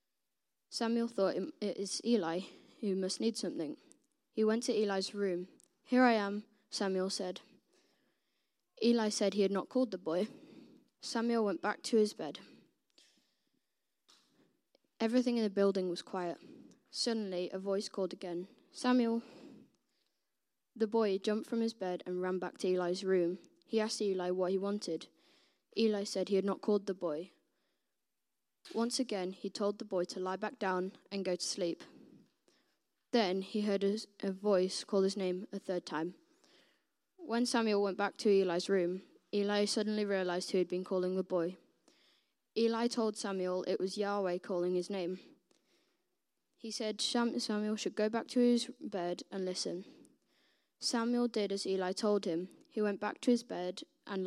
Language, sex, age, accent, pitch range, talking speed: English, female, 10-29, British, 185-230 Hz, 160 wpm